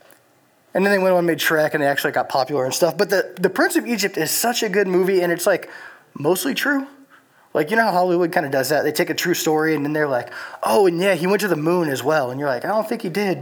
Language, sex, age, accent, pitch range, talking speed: English, male, 20-39, American, 150-190 Hz, 300 wpm